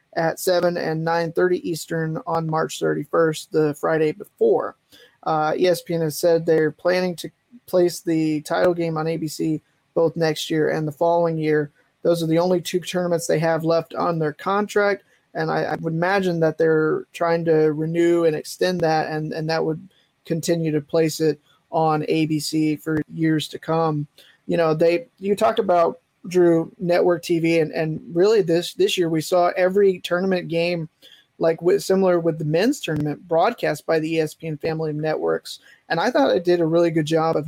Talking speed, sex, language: 180 wpm, male, English